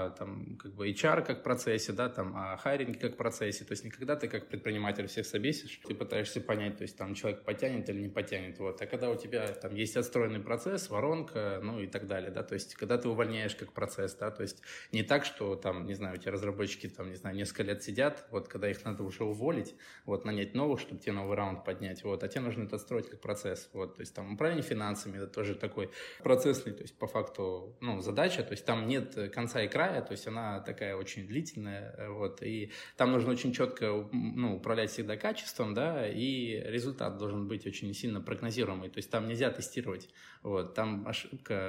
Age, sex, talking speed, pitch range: 20-39, male, 215 wpm, 100-125 Hz